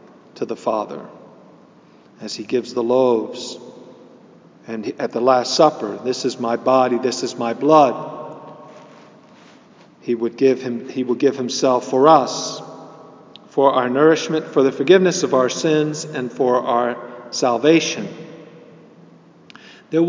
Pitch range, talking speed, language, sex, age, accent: 125-155 Hz, 125 wpm, English, male, 50-69, American